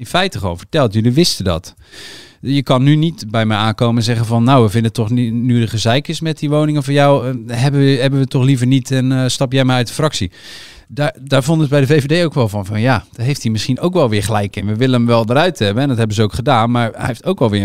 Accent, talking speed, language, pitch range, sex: Dutch, 295 wpm, Dutch, 105-135 Hz, male